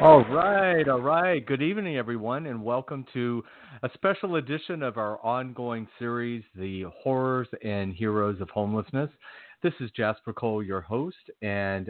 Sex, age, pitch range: male, 40-59, 100-120 Hz